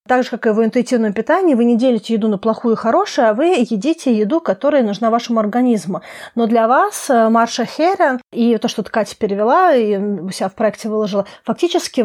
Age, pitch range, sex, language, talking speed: 30-49, 215-265 Hz, female, Russian, 195 wpm